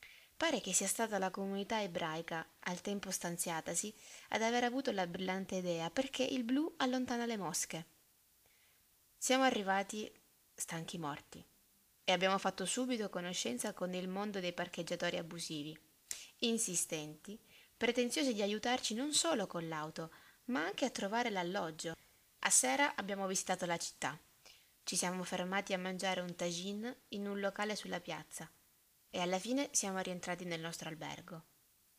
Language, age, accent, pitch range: Italian, 20-39, native, 175-220 Hz